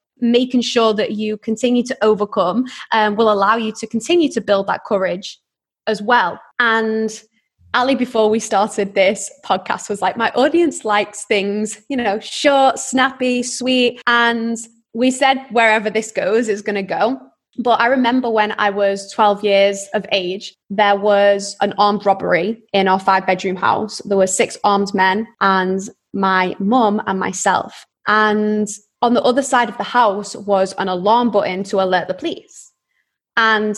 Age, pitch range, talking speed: 20-39, 205-245 Hz, 165 wpm